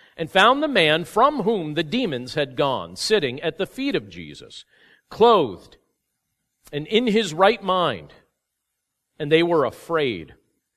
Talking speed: 145 wpm